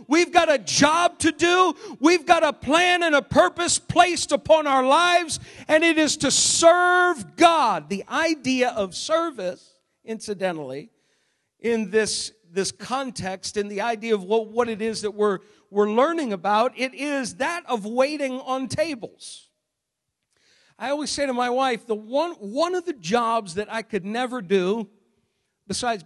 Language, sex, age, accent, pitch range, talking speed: English, male, 50-69, American, 210-270 Hz, 160 wpm